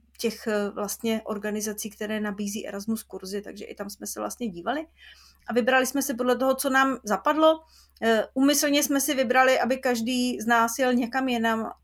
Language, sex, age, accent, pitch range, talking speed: Czech, female, 30-49, native, 205-235 Hz, 170 wpm